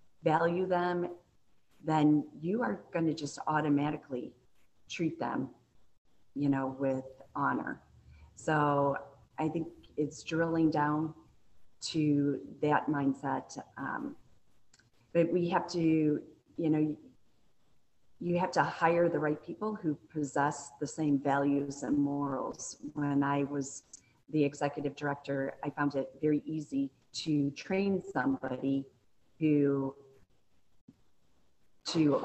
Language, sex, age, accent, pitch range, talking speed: English, female, 40-59, American, 135-155 Hz, 115 wpm